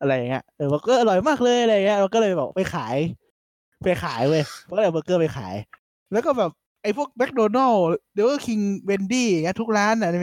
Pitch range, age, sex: 160-245 Hz, 20-39, male